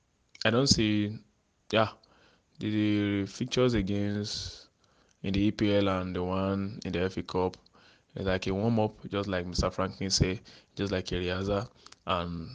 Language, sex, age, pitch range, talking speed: English, male, 20-39, 90-100 Hz, 150 wpm